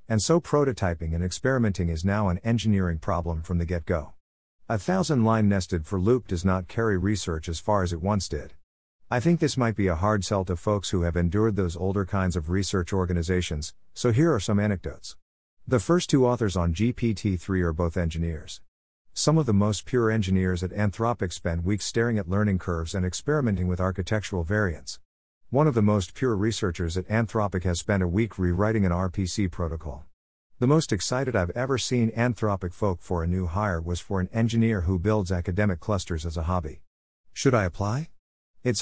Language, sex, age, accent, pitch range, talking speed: English, male, 50-69, American, 90-115 Hz, 190 wpm